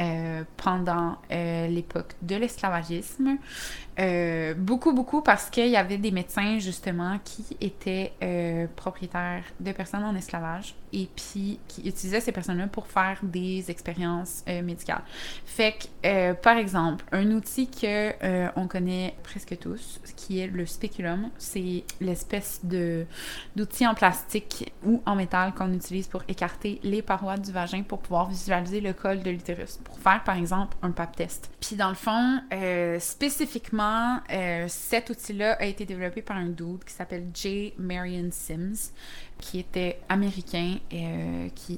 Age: 20-39